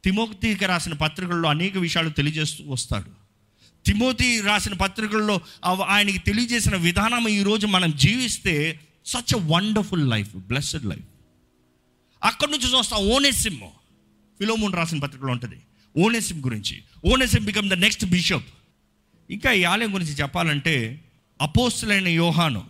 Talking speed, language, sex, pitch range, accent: 115 wpm, Telugu, male, 130-205 Hz, native